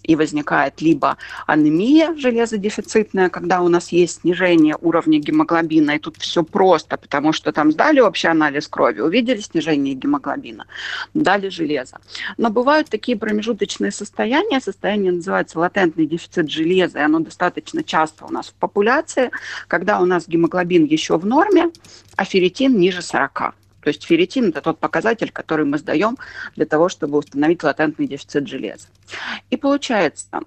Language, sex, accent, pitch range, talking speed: Ukrainian, female, native, 160-215 Hz, 150 wpm